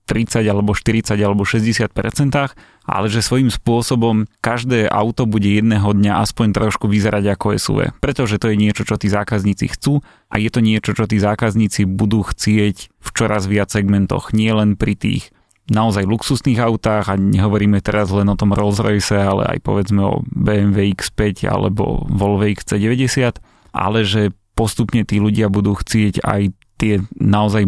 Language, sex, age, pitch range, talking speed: Slovak, male, 20-39, 100-115 Hz, 160 wpm